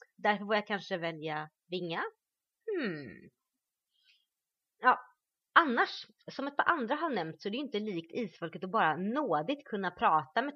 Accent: native